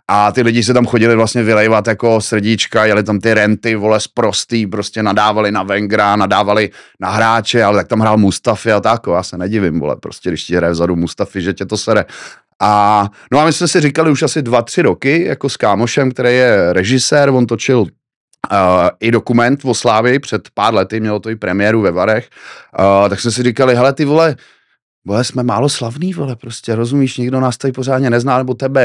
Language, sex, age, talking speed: Czech, male, 30-49, 210 wpm